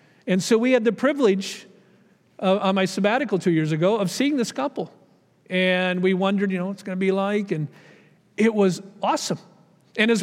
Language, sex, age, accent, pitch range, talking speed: English, male, 50-69, American, 180-245 Hz, 195 wpm